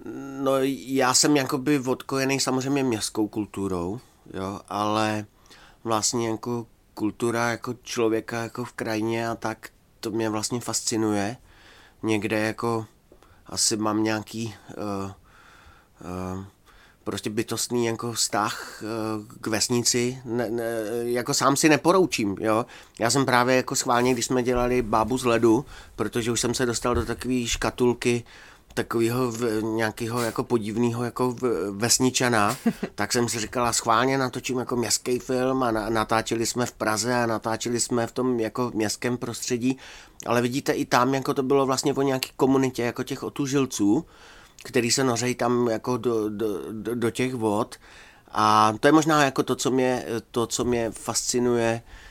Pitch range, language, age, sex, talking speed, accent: 110-125 Hz, Czech, 30-49, male, 150 wpm, native